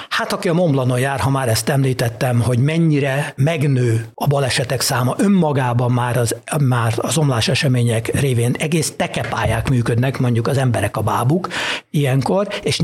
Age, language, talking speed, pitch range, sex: 60-79, Hungarian, 150 wpm, 120-160 Hz, male